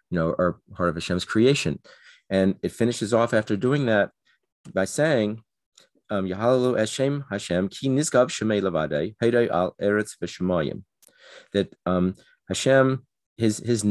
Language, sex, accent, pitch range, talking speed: English, male, American, 95-120 Hz, 105 wpm